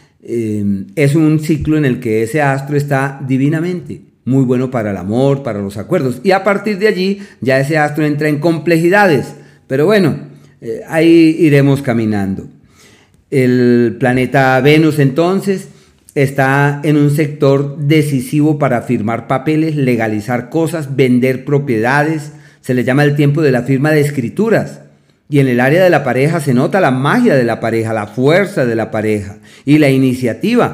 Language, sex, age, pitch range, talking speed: Spanish, male, 40-59, 125-155 Hz, 165 wpm